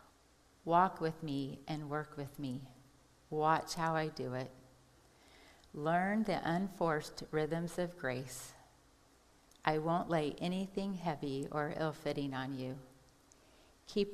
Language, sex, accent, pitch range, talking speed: English, female, American, 140-170 Hz, 120 wpm